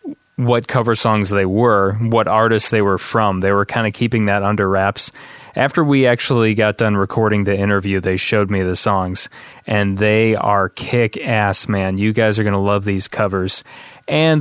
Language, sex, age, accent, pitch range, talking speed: English, male, 30-49, American, 100-120 Hz, 185 wpm